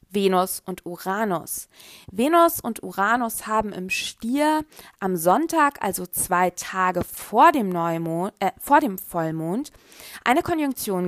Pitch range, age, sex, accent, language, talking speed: 190-240 Hz, 20-39, female, German, German, 125 wpm